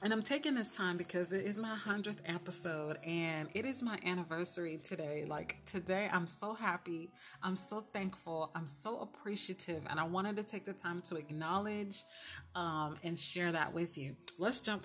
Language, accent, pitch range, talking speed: English, American, 160-195 Hz, 180 wpm